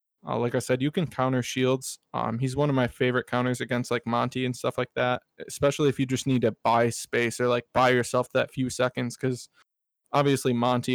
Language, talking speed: English, 220 wpm